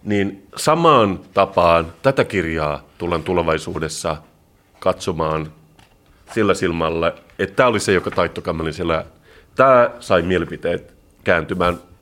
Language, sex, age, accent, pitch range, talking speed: Finnish, male, 30-49, native, 85-100 Hz, 105 wpm